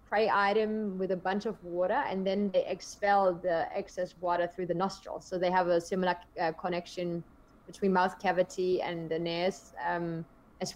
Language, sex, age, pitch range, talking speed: English, female, 20-39, 180-215 Hz, 165 wpm